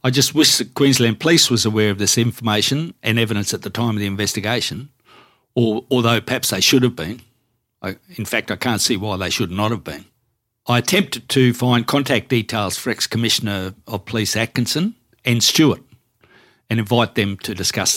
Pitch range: 105-130 Hz